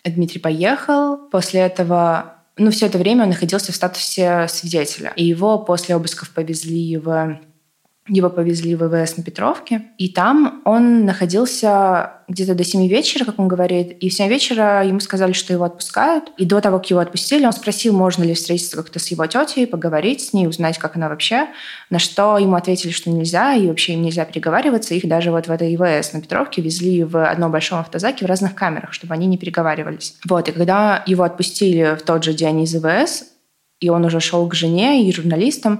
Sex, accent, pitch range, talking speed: female, native, 165-200 Hz, 195 wpm